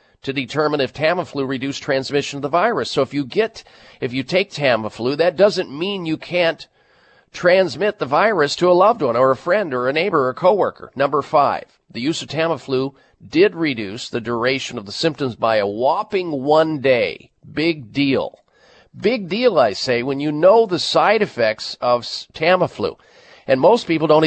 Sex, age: male, 40-59